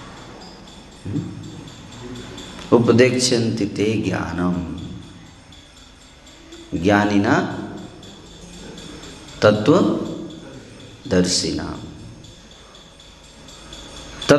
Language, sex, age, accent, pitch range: Hindi, male, 50-69, native, 95-130 Hz